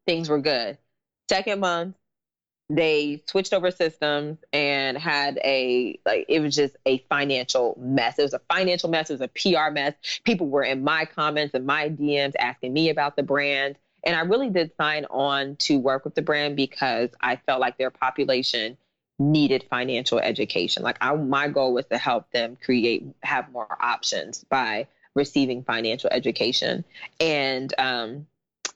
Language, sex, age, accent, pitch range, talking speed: English, female, 20-39, American, 130-155 Hz, 165 wpm